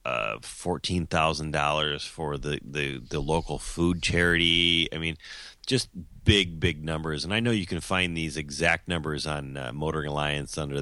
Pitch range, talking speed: 75-100 Hz, 170 wpm